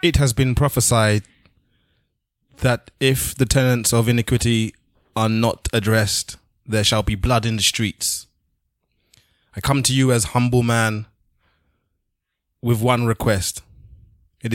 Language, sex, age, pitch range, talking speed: English, male, 20-39, 100-120 Hz, 130 wpm